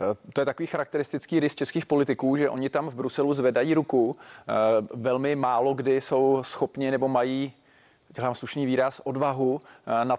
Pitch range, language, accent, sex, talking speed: 130-145 Hz, Czech, native, male, 155 wpm